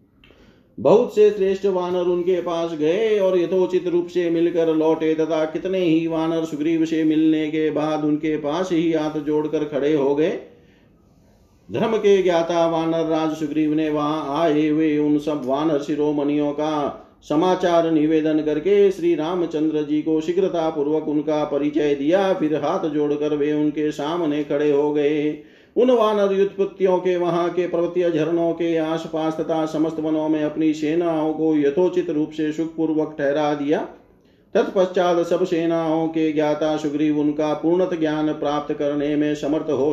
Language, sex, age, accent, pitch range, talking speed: Hindi, male, 50-69, native, 150-165 Hz, 155 wpm